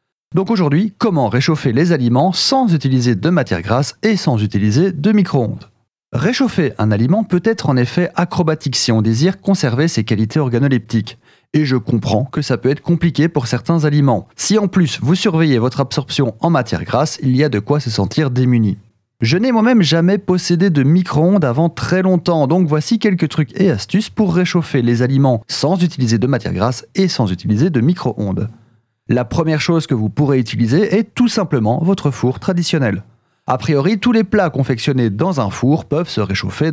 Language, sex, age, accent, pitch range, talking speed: French, male, 30-49, French, 120-180 Hz, 190 wpm